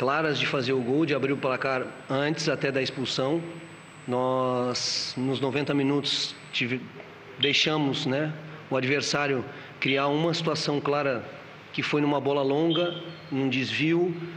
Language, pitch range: Portuguese, 145-170 Hz